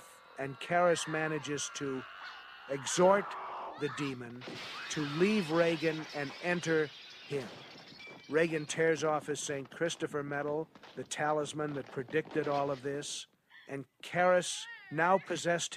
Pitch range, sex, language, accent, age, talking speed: 135-165 Hz, male, English, American, 50-69, 120 wpm